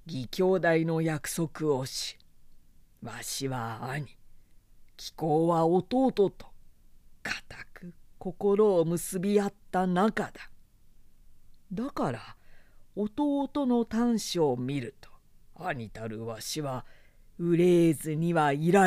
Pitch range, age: 110-185 Hz, 40-59